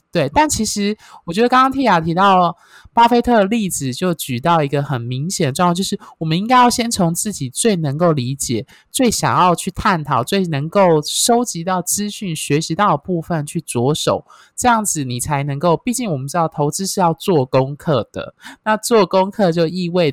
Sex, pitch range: male, 145-205 Hz